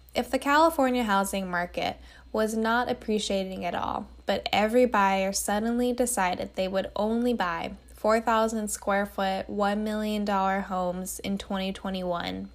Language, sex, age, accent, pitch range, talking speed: English, female, 10-29, American, 185-235 Hz, 130 wpm